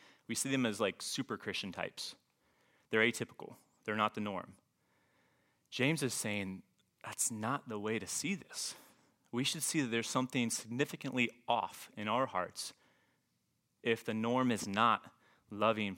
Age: 30-49